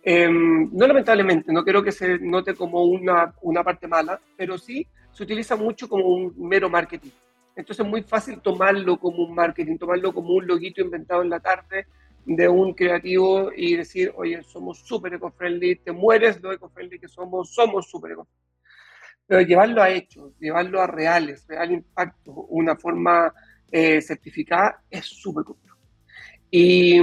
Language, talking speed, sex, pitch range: Spanish, 160 wpm, male, 165-195 Hz